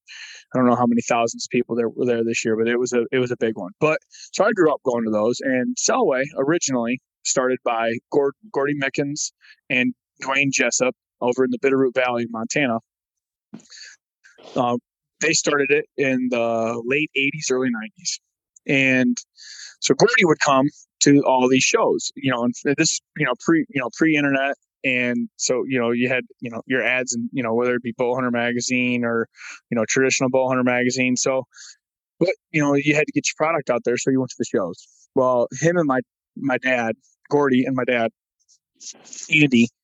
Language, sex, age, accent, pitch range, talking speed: English, male, 20-39, American, 120-140 Hz, 195 wpm